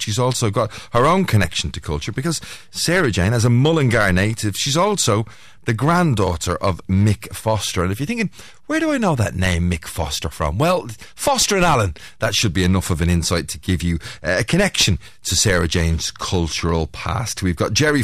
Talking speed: 195 wpm